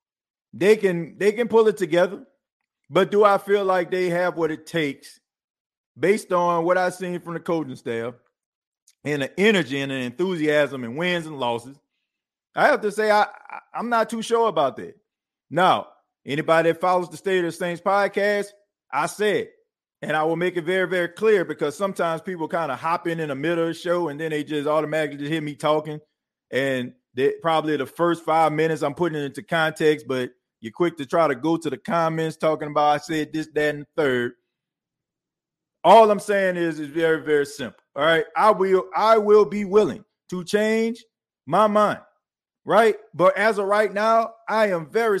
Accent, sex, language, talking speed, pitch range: American, male, English, 195 wpm, 155-205 Hz